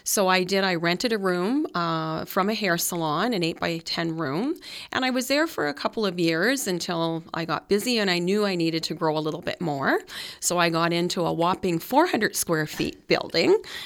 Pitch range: 165-200 Hz